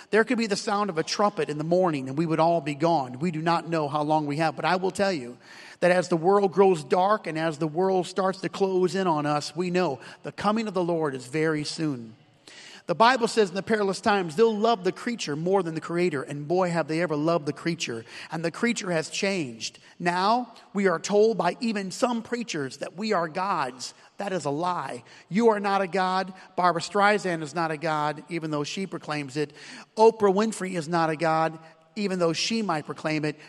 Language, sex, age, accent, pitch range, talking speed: English, male, 40-59, American, 160-210 Hz, 230 wpm